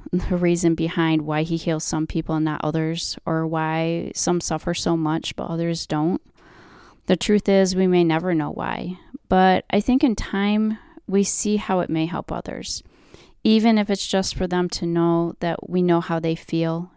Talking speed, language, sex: 190 wpm, English, female